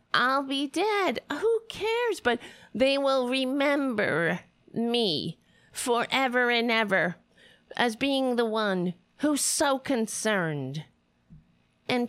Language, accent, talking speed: English, American, 105 wpm